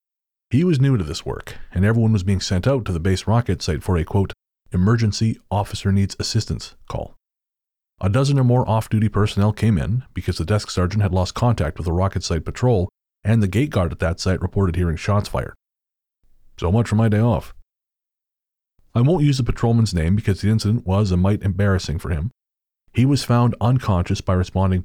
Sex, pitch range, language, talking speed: male, 90-115 Hz, English, 200 wpm